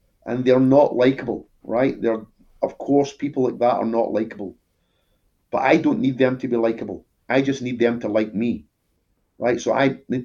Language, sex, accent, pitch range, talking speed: English, male, British, 105-130 Hz, 195 wpm